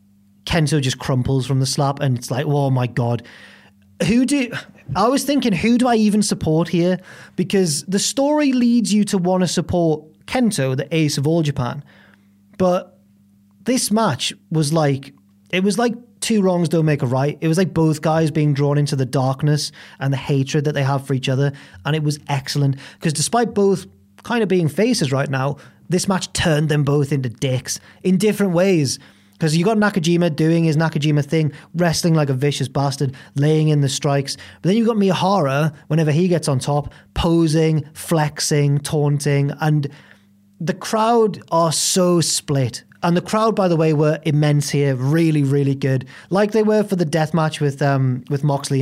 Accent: British